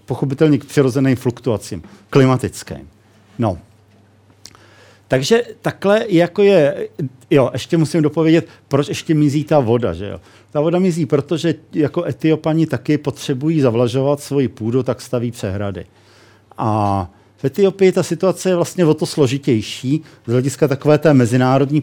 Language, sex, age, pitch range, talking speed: Czech, male, 50-69, 110-155 Hz, 135 wpm